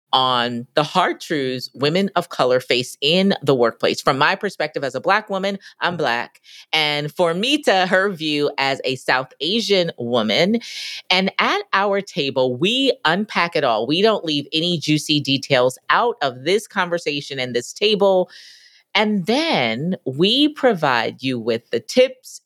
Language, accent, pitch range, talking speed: English, American, 140-205 Hz, 160 wpm